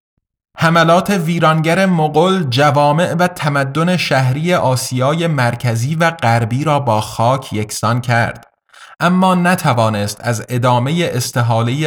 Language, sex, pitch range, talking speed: Persian, male, 115-155 Hz, 105 wpm